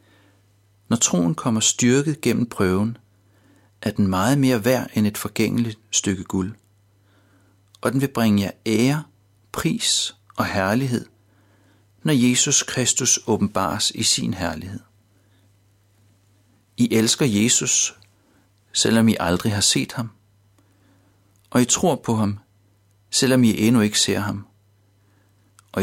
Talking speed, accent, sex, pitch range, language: 125 wpm, native, male, 100-115 Hz, Danish